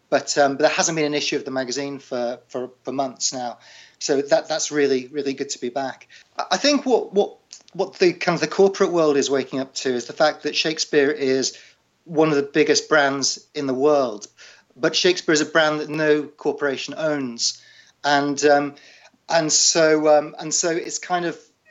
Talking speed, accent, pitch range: 200 wpm, British, 140-170 Hz